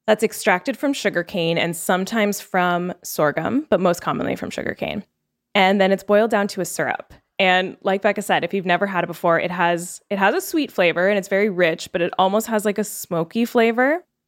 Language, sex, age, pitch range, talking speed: English, female, 10-29, 175-220 Hz, 210 wpm